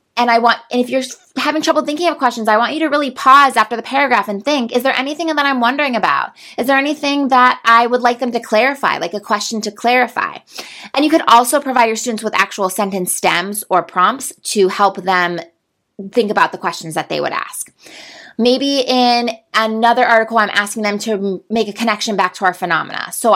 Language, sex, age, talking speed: English, female, 20-39, 215 wpm